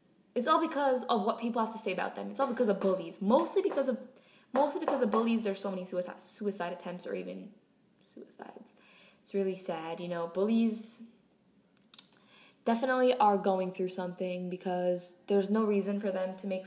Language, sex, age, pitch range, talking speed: English, female, 10-29, 185-225 Hz, 185 wpm